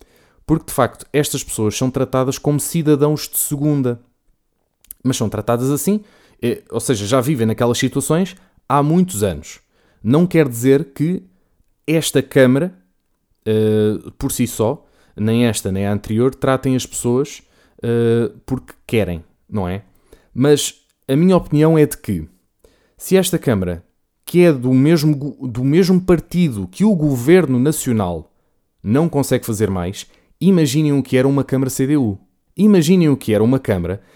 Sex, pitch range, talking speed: male, 110-150 Hz, 145 wpm